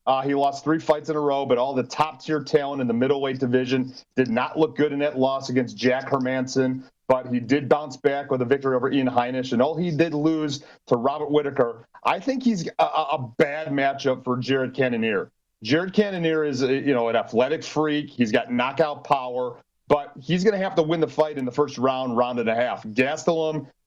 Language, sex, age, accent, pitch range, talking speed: English, male, 40-59, American, 130-155 Hz, 220 wpm